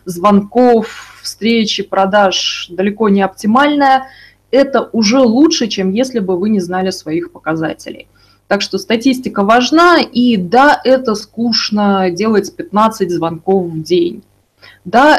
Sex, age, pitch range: female, 20-39, 185-235 Hz